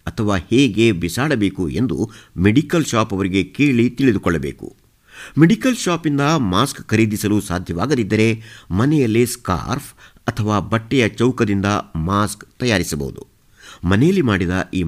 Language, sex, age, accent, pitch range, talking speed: Kannada, male, 50-69, native, 95-135 Hz, 95 wpm